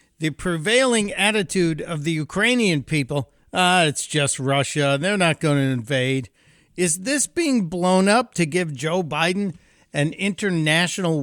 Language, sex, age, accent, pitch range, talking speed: English, male, 50-69, American, 140-185 Hz, 145 wpm